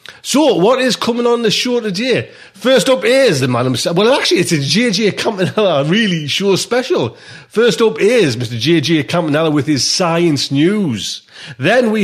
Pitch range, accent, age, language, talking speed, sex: 120-185 Hz, British, 30-49, English, 175 wpm, male